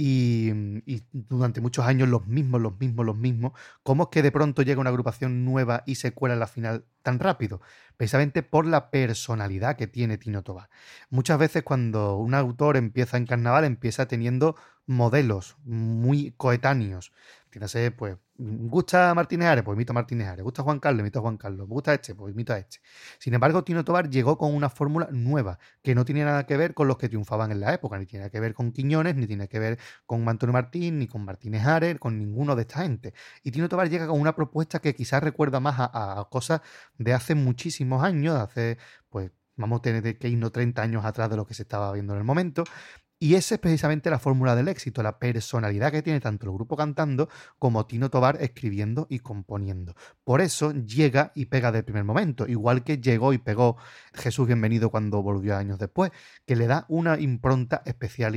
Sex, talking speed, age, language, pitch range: male, 215 wpm, 30-49, Spanish, 115-145 Hz